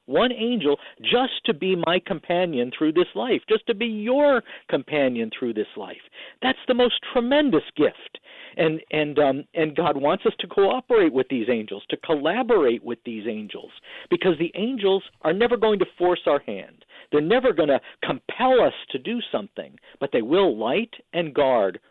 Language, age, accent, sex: English, 50-69, American, male